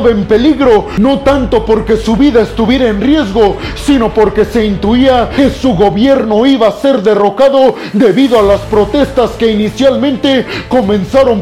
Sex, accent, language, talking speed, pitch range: male, Mexican, Spanish, 145 wpm, 215-270 Hz